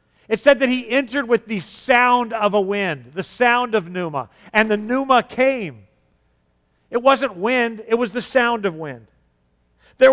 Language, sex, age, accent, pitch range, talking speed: English, male, 50-69, American, 195-245 Hz, 170 wpm